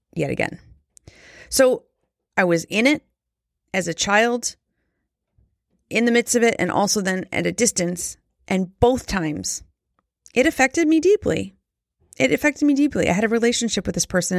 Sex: female